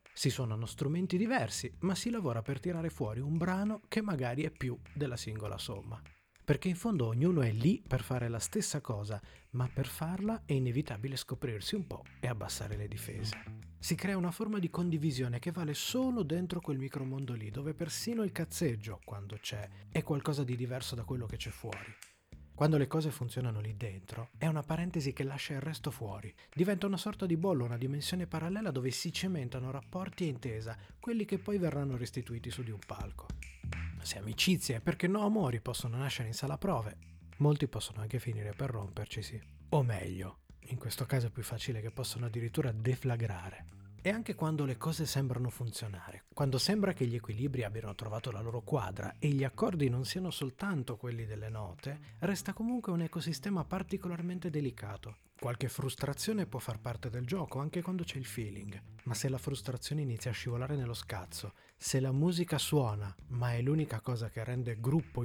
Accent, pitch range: native, 110-160 Hz